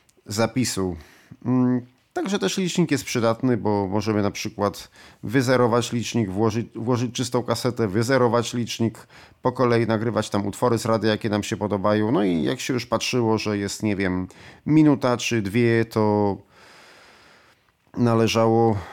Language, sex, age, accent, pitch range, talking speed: Polish, male, 40-59, native, 105-125 Hz, 140 wpm